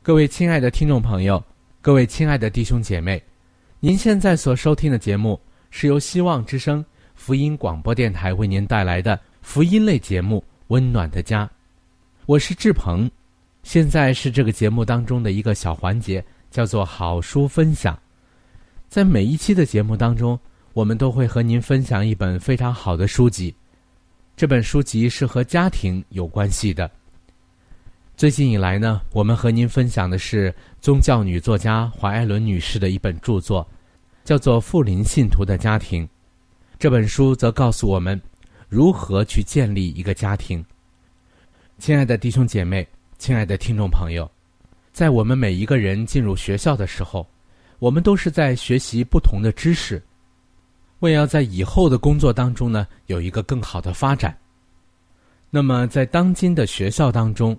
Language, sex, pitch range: Chinese, male, 90-130 Hz